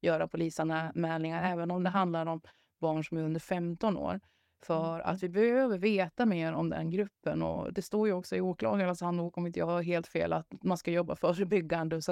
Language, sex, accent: Swedish, female, native